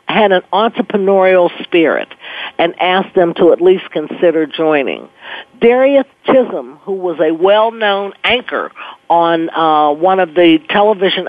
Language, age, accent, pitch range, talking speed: English, 50-69, American, 170-220 Hz, 135 wpm